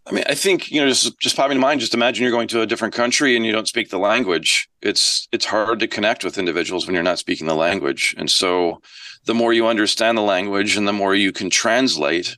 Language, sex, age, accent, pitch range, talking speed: English, male, 40-59, American, 100-120 Hz, 250 wpm